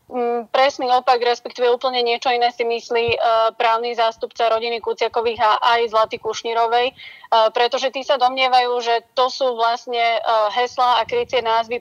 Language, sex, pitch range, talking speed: Slovak, female, 225-250 Hz, 160 wpm